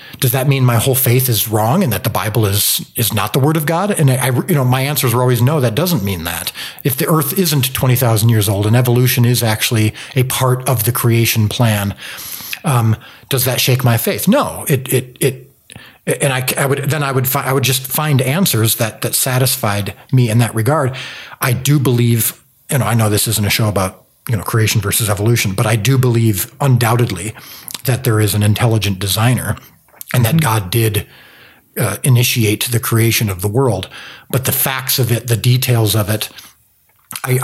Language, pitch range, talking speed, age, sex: English, 110-135 Hz, 210 wpm, 40-59, male